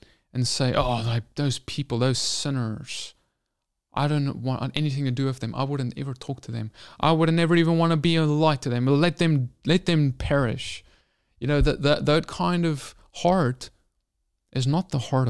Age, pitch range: 20-39, 125-155 Hz